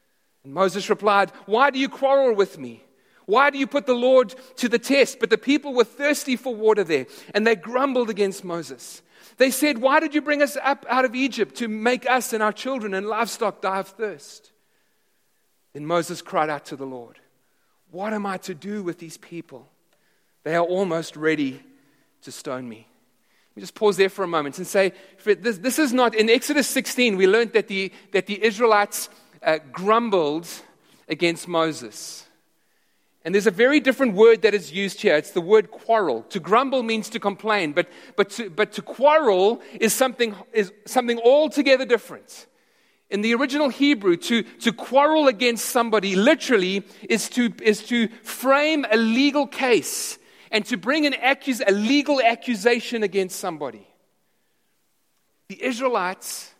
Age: 40-59